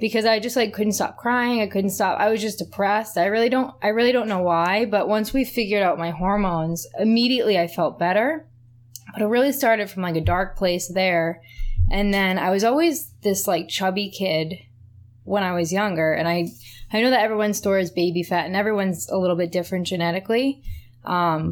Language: English